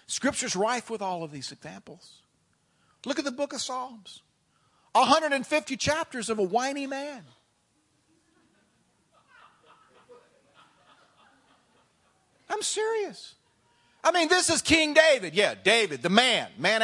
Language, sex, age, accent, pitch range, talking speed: English, male, 50-69, American, 220-310 Hz, 115 wpm